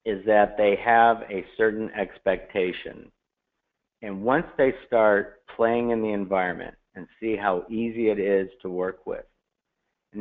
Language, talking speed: English, 145 wpm